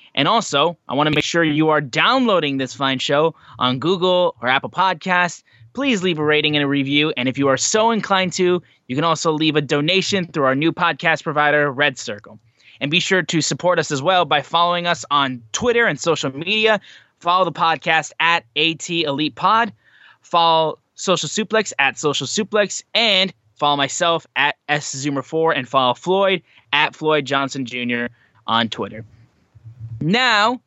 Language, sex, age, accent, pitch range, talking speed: English, male, 20-39, American, 135-175 Hz, 175 wpm